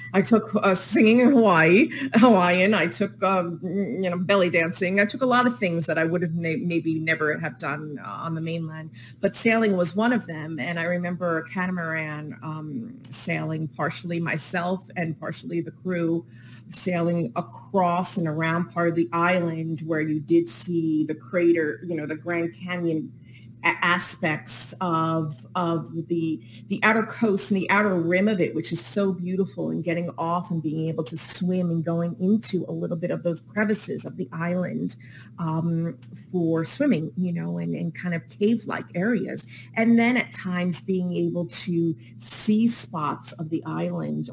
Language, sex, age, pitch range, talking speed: English, female, 30-49, 160-185 Hz, 175 wpm